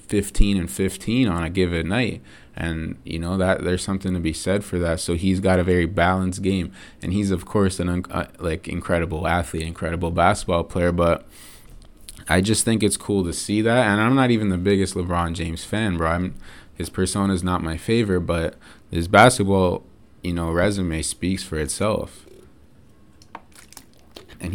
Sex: male